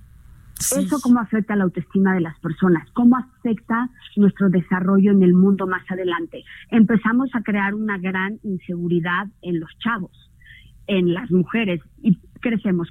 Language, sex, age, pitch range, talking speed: Spanish, female, 40-59, 180-220 Hz, 145 wpm